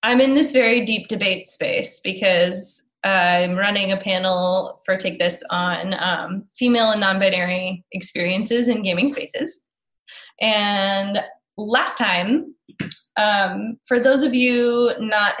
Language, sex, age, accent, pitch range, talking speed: English, female, 20-39, American, 180-225 Hz, 130 wpm